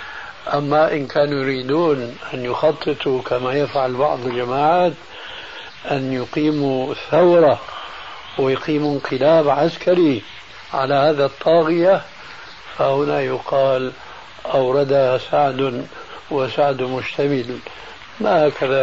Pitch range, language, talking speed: 130-165 Hz, Arabic, 85 wpm